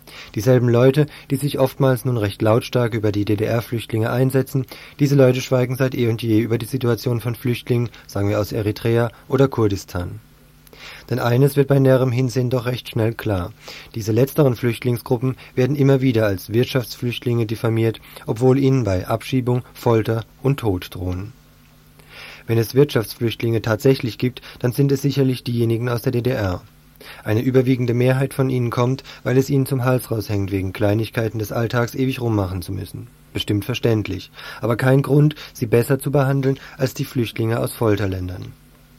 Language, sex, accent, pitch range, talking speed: German, male, German, 110-130 Hz, 160 wpm